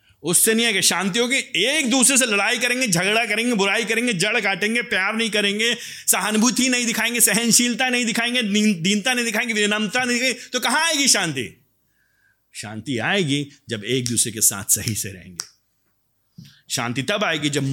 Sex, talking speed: male, 165 wpm